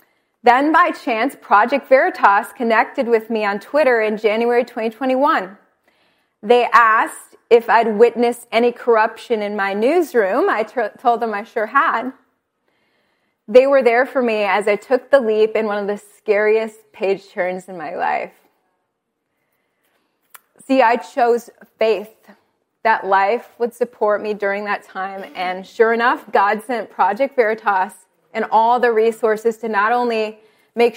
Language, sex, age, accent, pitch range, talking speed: English, female, 20-39, American, 205-245 Hz, 145 wpm